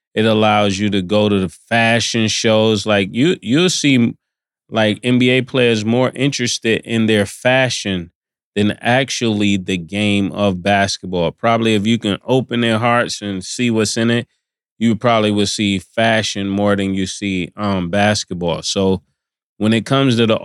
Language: English